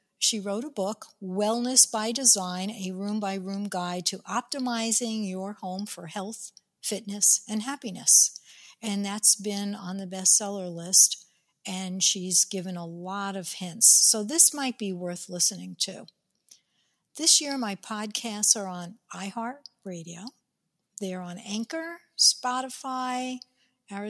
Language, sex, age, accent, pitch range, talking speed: English, female, 60-79, American, 185-235 Hz, 125 wpm